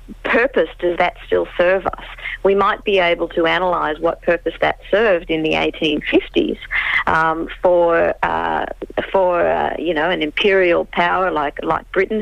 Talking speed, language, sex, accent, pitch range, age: 155 wpm, English, female, Australian, 165-205 Hz, 50-69